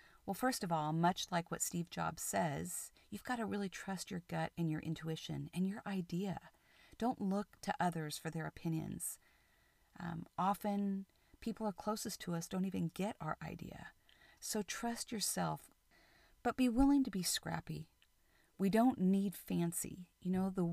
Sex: female